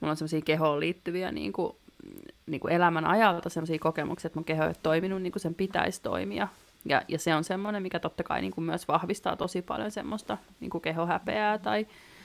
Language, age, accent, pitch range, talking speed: Finnish, 30-49, native, 160-180 Hz, 195 wpm